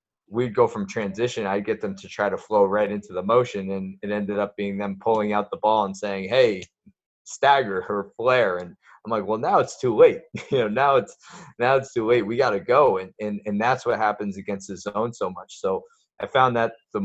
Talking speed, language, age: 235 wpm, English, 20-39